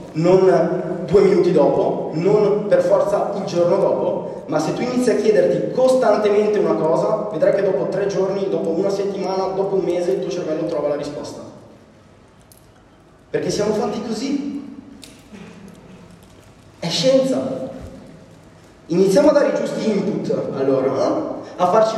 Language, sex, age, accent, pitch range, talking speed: Italian, male, 30-49, native, 170-220 Hz, 140 wpm